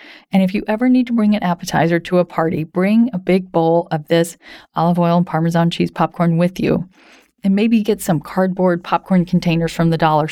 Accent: American